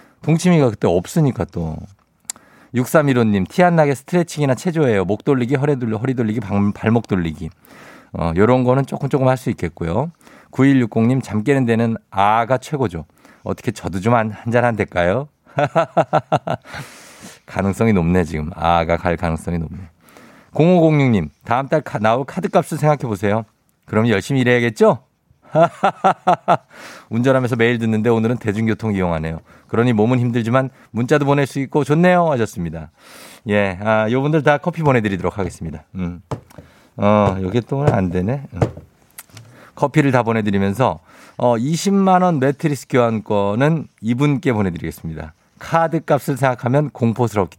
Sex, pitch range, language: male, 95-140 Hz, Korean